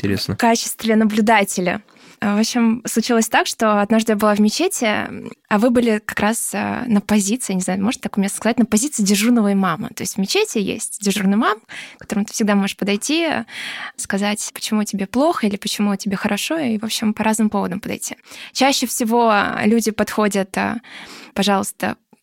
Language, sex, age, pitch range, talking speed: Russian, female, 20-39, 210-240 Hz, 175 wpm